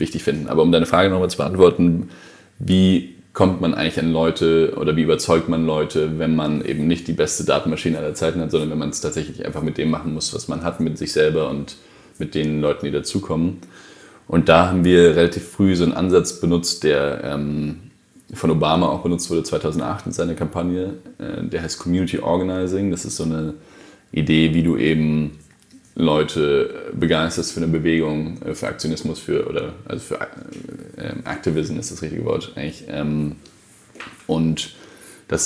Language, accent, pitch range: German, German, 75-85 Hz